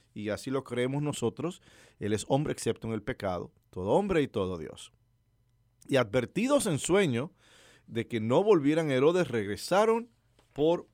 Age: 50-69